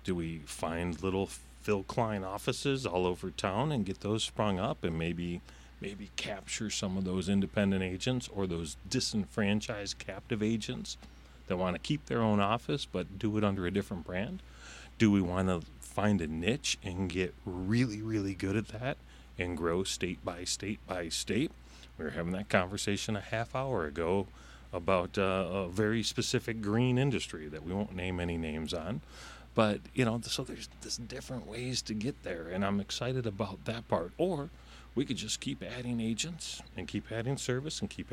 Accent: American